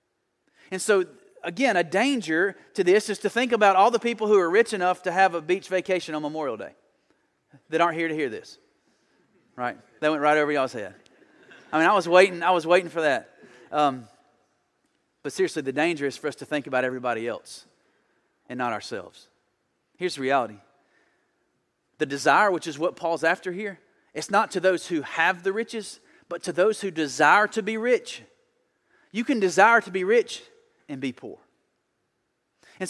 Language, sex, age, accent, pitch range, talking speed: English, male, 30-49, American, 150-210 Hz, 185 wpm